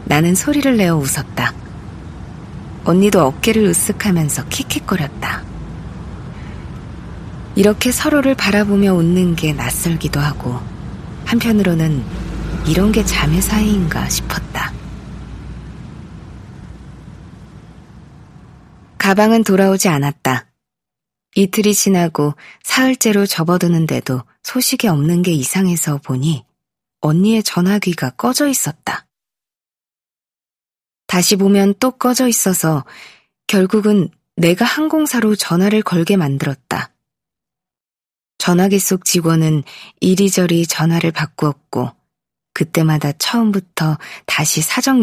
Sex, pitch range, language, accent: female, 150-205 Hz, Korean, native